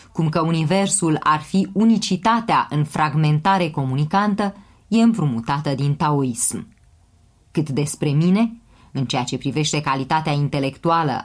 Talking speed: 115 wpm